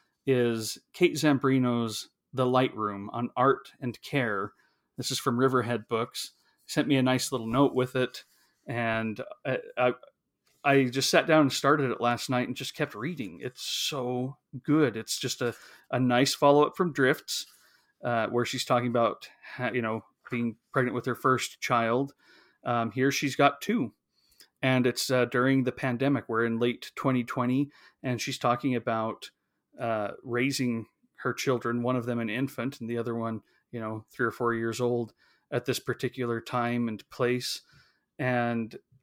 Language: English